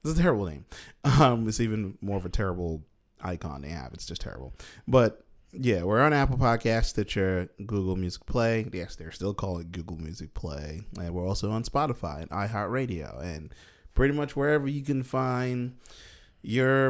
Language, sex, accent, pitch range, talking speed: English, male, American, 85-115 Hz, 175 wpm